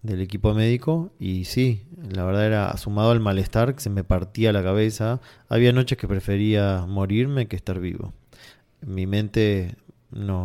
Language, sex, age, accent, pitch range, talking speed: Spanish, male, 20-39, Argentinian, 95-120 Hz, 160 wpm